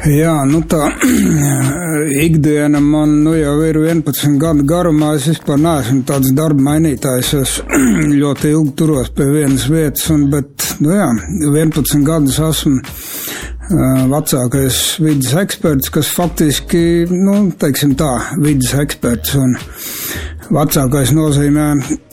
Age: 60-79